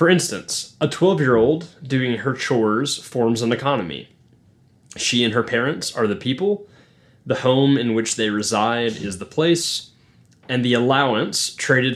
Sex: male